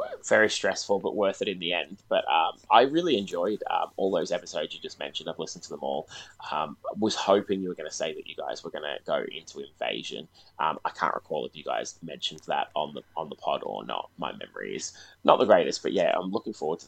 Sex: male